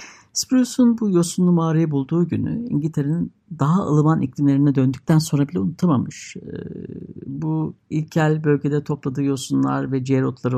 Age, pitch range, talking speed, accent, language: 60-79, 130-175 Hz, 120 wpm, native, Turkish